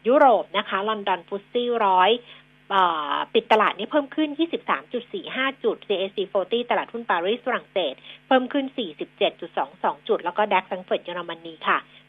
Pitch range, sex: 195-260 Hz, female